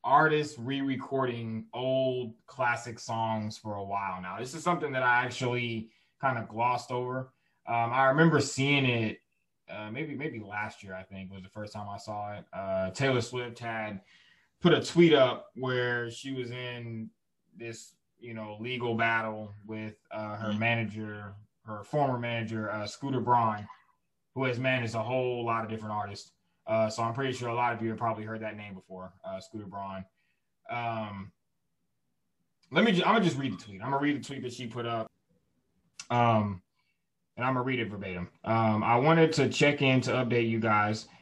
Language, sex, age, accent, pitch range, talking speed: English, male, 20-39, American, 110-130 Hz, 185 wpm